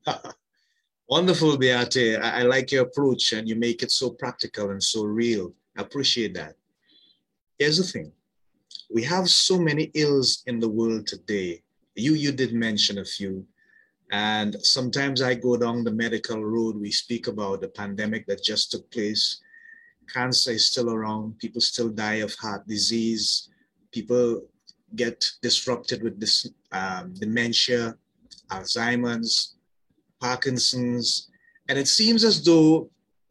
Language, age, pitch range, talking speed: English, 30-49, 110-135 Hz, 140 wpm